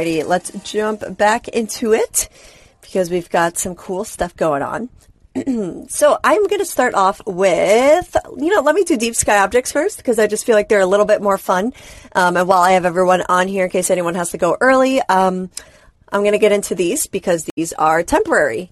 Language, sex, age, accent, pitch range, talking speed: English, female, 30-49, American, 180-245 Hz, 210 wpm